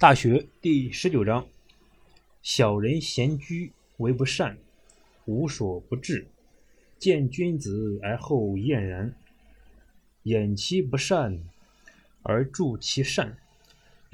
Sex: male